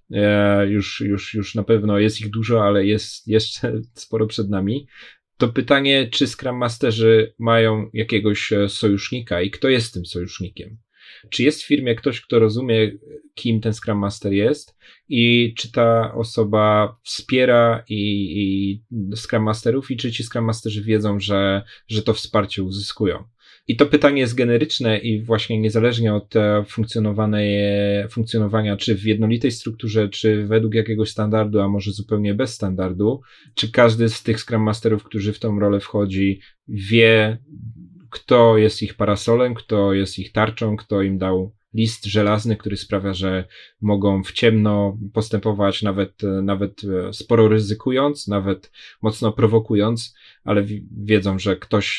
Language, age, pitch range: Polish, 30-49, 100-115 Hz